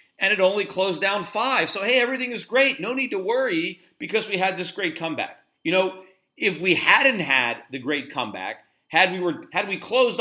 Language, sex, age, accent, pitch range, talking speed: English, male, 50-69, American, 155-215 Hz, 210 wpm